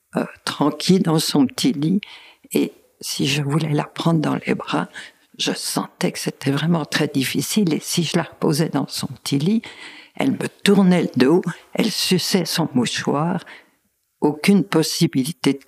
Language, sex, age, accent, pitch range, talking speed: French, female, 60-79, French, 145-190 Hz, 165 wpm